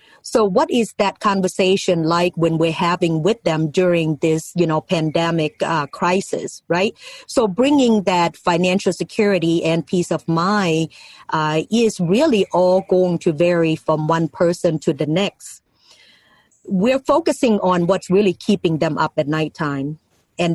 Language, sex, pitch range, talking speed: English, female, 165-195 Hz, 150 wpm